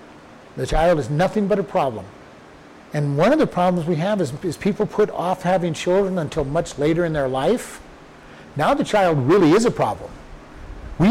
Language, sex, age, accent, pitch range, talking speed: English, male, 50-69, American, 160-210 Hz, 190 wpm